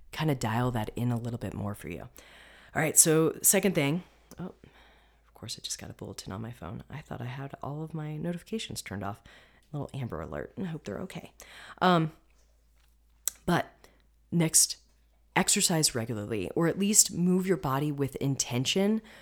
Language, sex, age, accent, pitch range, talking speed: English, female, 30-49, American, 115-160 Hz, 180 wpm